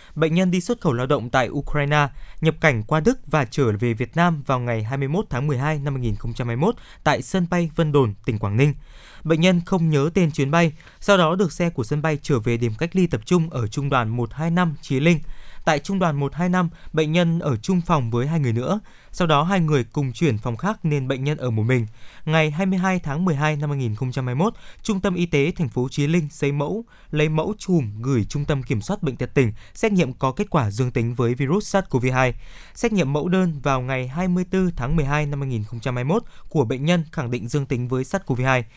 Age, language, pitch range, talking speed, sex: 20-39, Vietnamese, 130-170 Hz, 225 wpm, male